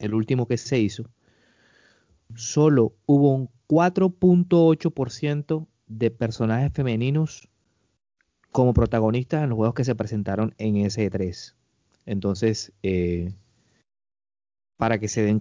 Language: Spanish